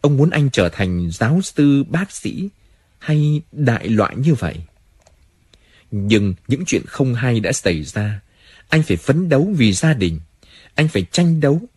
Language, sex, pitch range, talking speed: Vietnamese, male, 90-140 Hz, 170 wpm